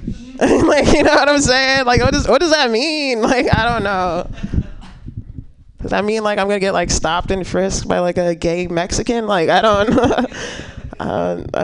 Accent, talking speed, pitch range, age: American, 205 wpm, 155-225 Hz, 20-39